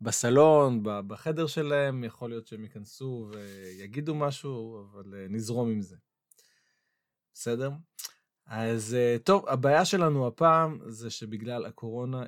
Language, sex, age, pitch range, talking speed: Hebrew, male, 20-39, 115-140 Hz, 105 wpm